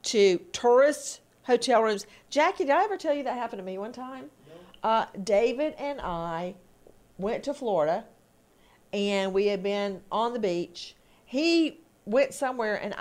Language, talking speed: English, 155 wpm